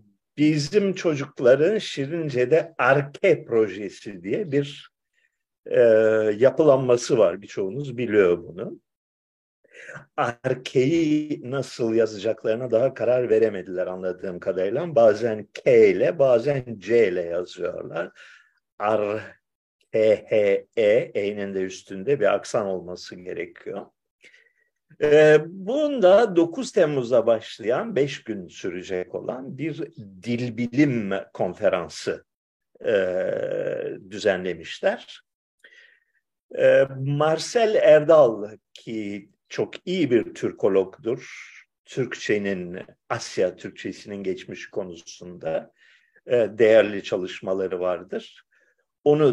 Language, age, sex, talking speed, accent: Turkish, 50-69, male, 80 wpm, native